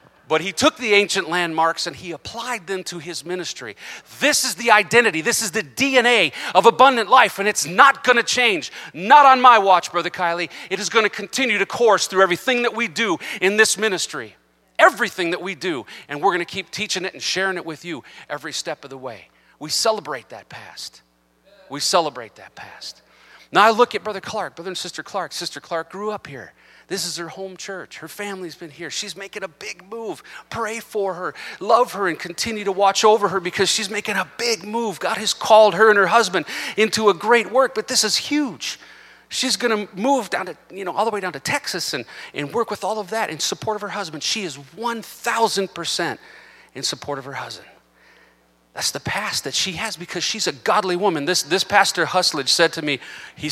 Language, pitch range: English, 165-220 Hz